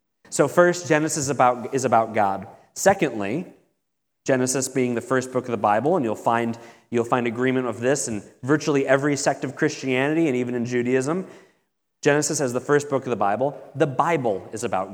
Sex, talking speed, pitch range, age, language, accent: male, 180 wpm, 125-150 Hz, 30-49, English, American